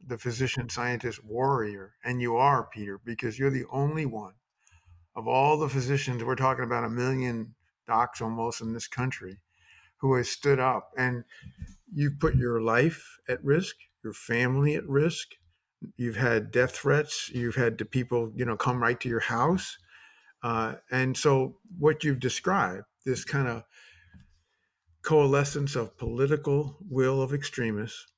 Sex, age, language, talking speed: male, 50-69, English, 155 wpm